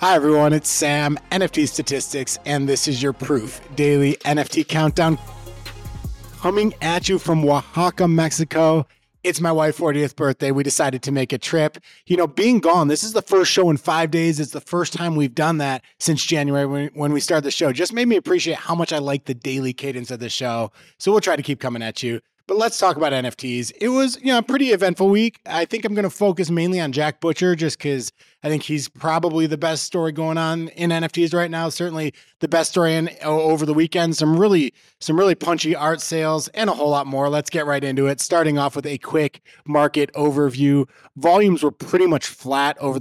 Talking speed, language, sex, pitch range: 215 wpm, English, male, 140-165 Hz